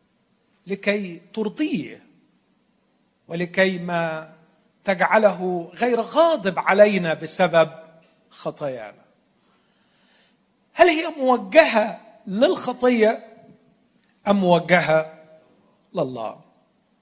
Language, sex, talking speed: Arabic, male, 60 wpm